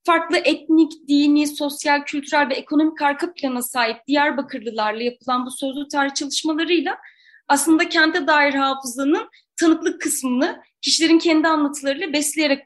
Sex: female